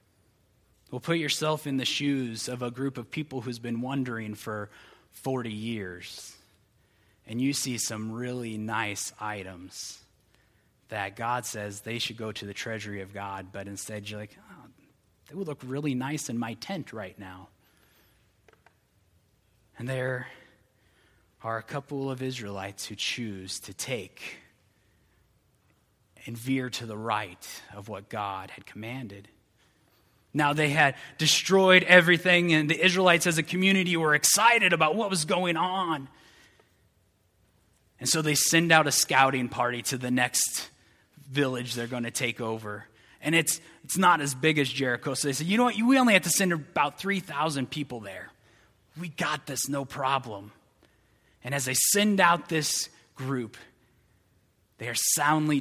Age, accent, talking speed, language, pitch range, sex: 20-39, American, 155 wpm, English, 105-150 Hz, male